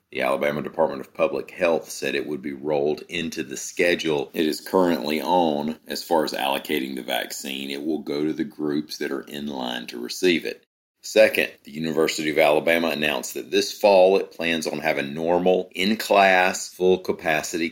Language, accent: English, American